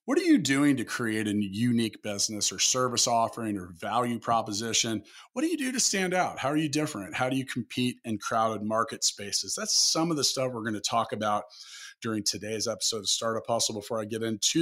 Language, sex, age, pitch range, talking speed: English, male, 30-49, 115-145 Hz, 220 wpm